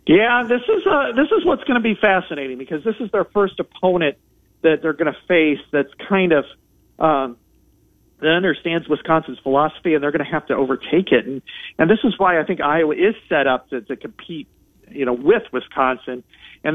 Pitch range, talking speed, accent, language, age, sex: 135-170 Hz, 195 wpm, American, English, 50-69, male